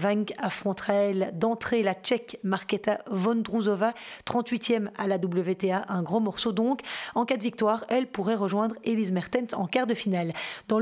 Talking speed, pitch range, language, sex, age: 165 wpm, 195-235 Hz, French, female, 40-59